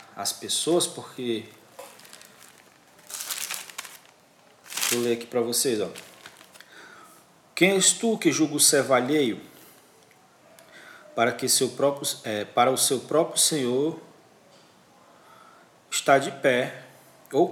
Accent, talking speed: Brazilian, 105 wpm